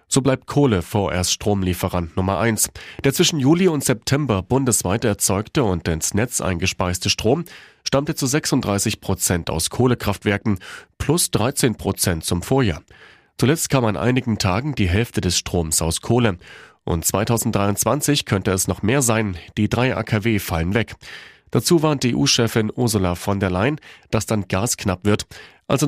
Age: 40-59